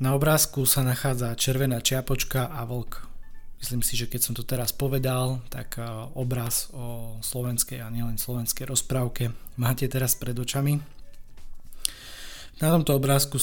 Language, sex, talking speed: Slovak, male, 140 wpm